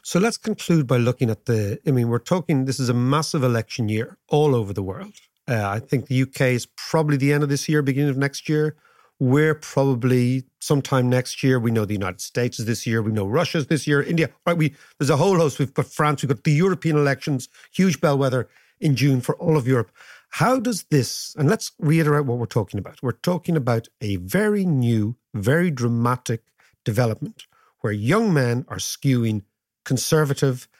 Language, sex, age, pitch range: English, male, 50-69, 120-155 Hz